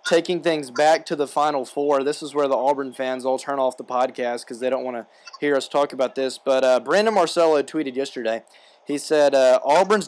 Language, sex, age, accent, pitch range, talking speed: English, male, 20-39, American, 145-185 Hz, 225 wpm